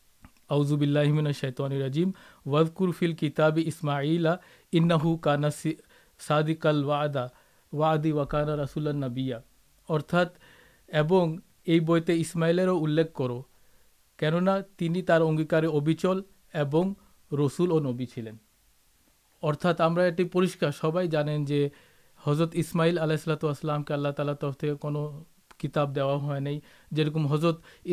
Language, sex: Urdu, male